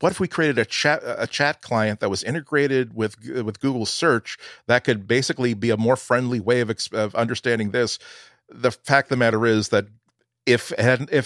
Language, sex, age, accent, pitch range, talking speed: English, male, 40-59, American, 95-120 Hz, 190 wpm